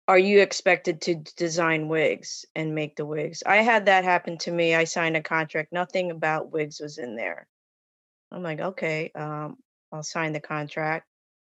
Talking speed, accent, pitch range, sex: 180 wpm, American, 160-185 Hz, female